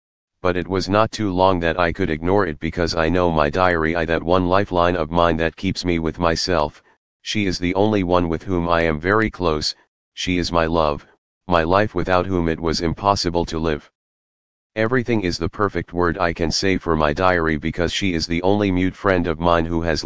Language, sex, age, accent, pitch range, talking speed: English, male, 40-59, American, 80-95 Hz, 220 wpm